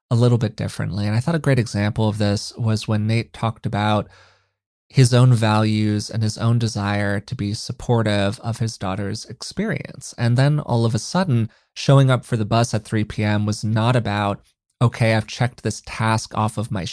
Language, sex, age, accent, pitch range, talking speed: English, male, 30-49, American, 105-130 Hz, 200 wpm